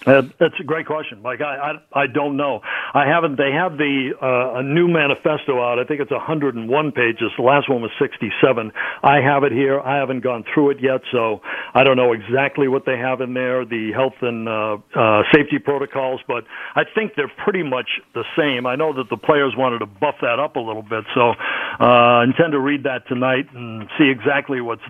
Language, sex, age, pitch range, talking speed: English, male, 60-79, 125-150 Hz, 225 wpm